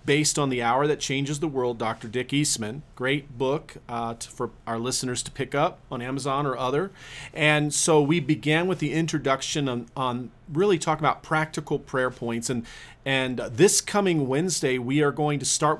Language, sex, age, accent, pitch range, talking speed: English, male, 40-59, American, 125-155 Hz, 185 wpm